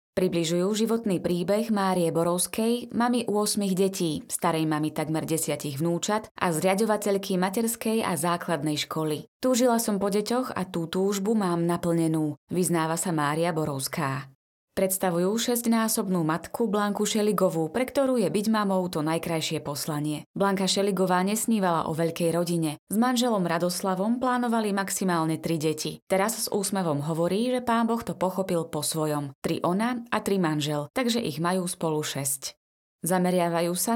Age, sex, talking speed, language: 20-39, female, 145 wpm, Slovak